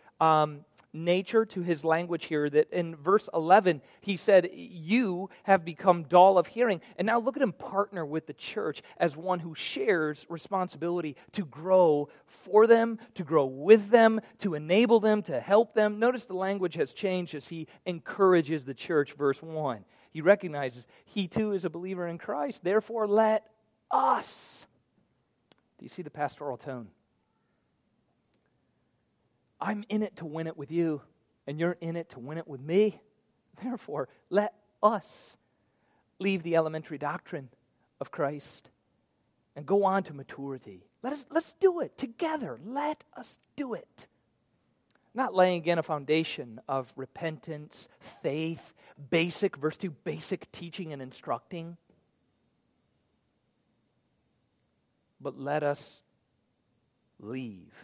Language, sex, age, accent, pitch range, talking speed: English, male, 40-59, American, 150-205 Hz, 140 wpm